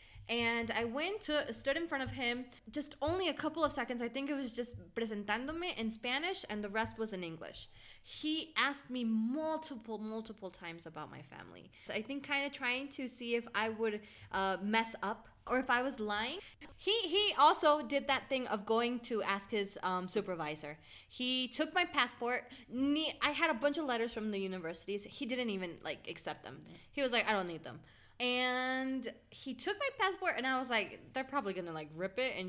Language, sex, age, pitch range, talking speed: English, female, 20-39, 195-275 Hz, 210 wpm